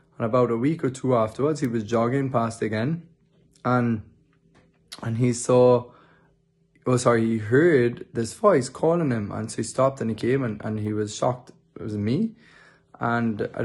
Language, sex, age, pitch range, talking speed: English, male, 20-39, 110-135 Hz, 180 wpm